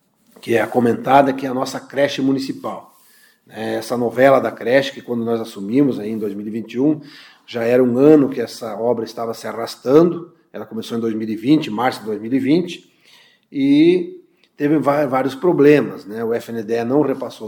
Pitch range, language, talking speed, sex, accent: 115-145 Hz, Portuguese, 160 wpm, male, Brazilian